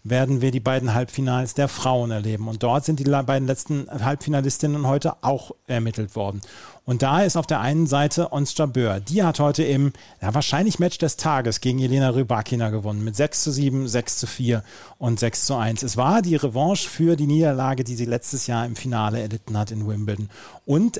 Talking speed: 200 wpm